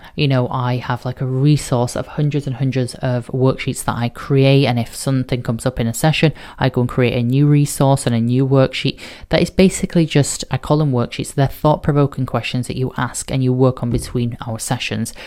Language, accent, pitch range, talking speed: English, British, 120-140 Hz, 225 wpm